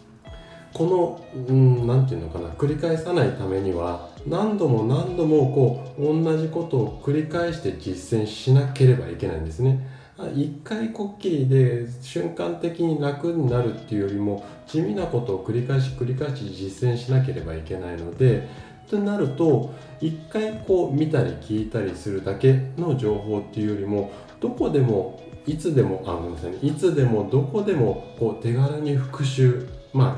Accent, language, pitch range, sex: native, Japanese, 95-150 Hz, male